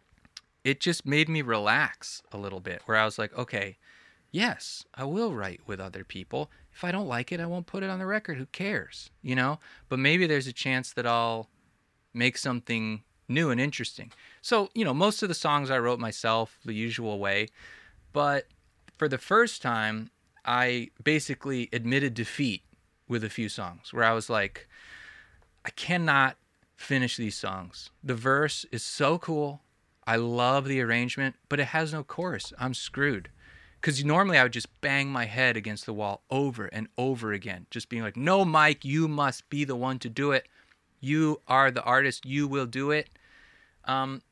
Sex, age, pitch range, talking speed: male, 20-39, 115-150 Hz, 185 wpm